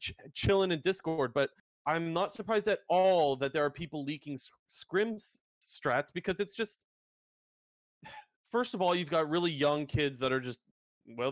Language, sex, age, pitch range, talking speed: English, male, 30-49, 135-180 Hz, 175 wpm